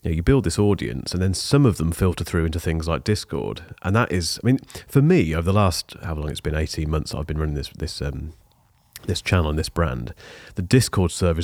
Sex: male